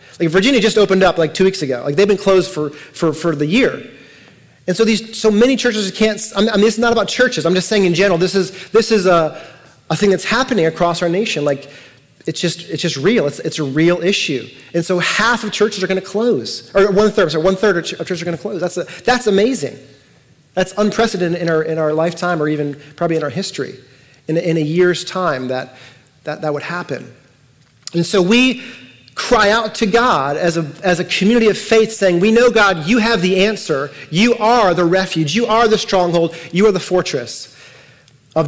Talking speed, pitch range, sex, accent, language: 225 wpm, 155-205 Hz, male, American, English